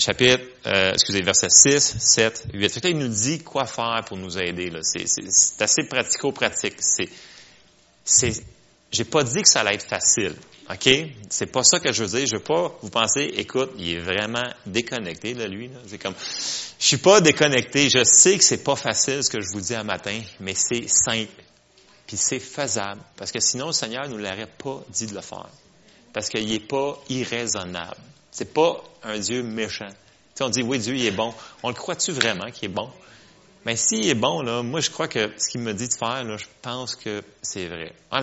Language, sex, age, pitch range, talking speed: French, male, 30-49, 105-130 Hz, 215 wpm